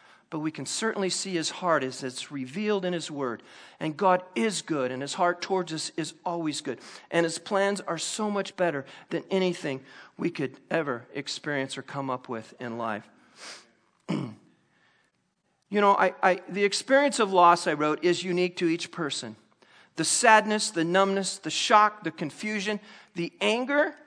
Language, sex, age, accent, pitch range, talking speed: English, male, 40-59, American, 170-255 Hz, 170 wpm